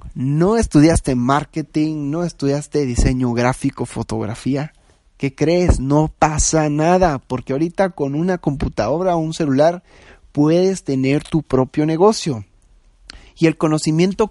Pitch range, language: 135-180 Hz, Spanish